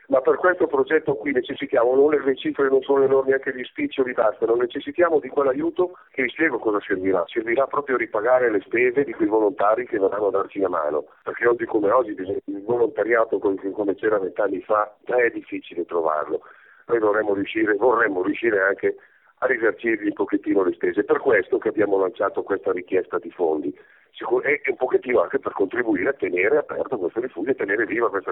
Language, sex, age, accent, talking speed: Italian, male, 40-59, native, 185 wpm